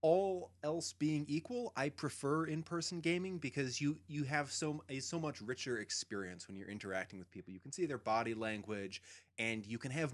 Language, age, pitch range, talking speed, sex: English, 30-49, 90-135 Hz, 195 wpm, male